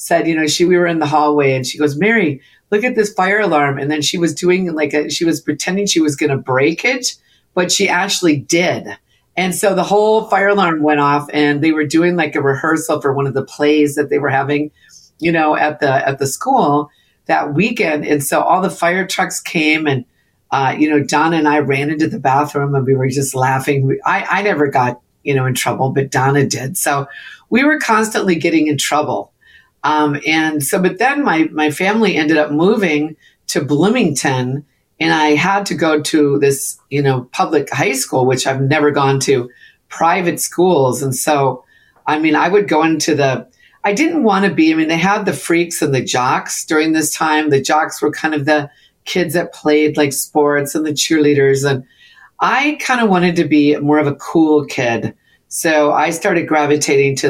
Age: 50-69